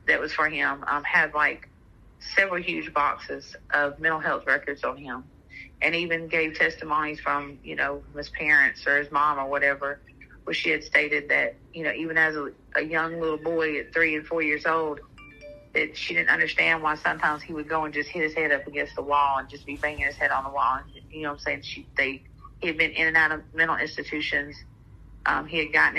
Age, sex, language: 30-49, female, English